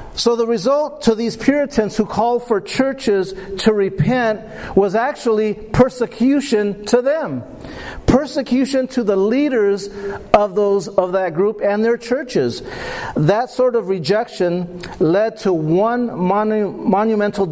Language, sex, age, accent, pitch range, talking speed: English, male, 50-69, American, 180-230 Hz, 130 wpm